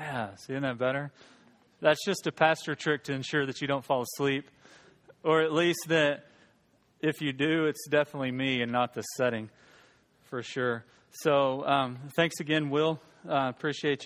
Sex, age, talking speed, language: male, 30-49, 170 wpm, English